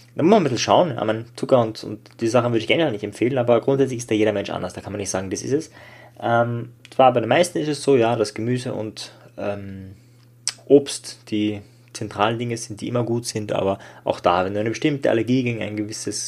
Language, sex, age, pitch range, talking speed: German, male, 20-39, 110-125 Hz, 235 wpm